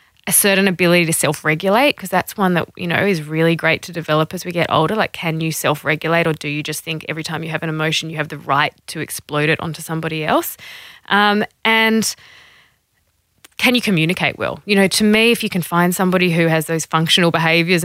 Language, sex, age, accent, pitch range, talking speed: English, female, 20-39, Australian, 160-195 Hz, 220 wpm